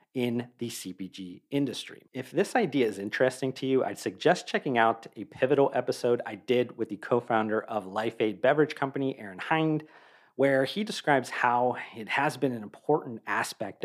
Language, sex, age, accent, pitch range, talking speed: English, male, 40-59, American, 110-145 Hz, 175 wpm